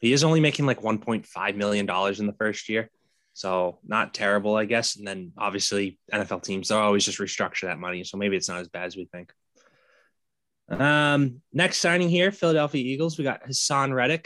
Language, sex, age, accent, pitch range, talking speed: English, male, 20-39, American, 100-125 Hz, 200 wpm